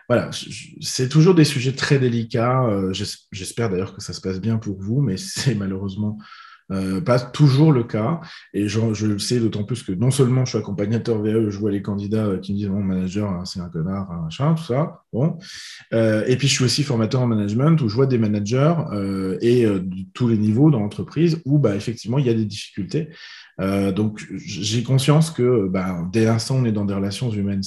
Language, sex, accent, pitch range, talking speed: French, male, French, 105-145 Hz, 200 wpm